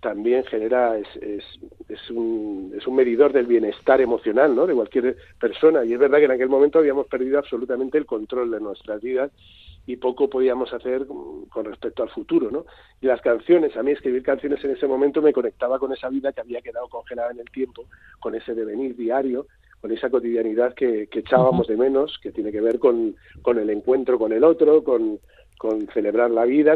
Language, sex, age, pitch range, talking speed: Spanish, male, 40-59, 125-180 Hz, 200 wpm